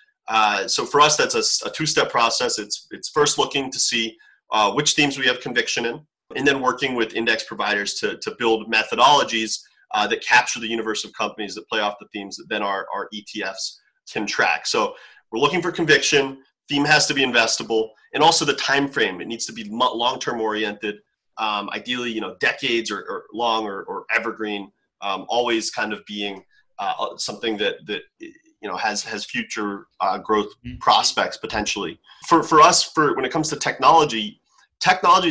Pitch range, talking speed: 105-140 Hz, 195 wpm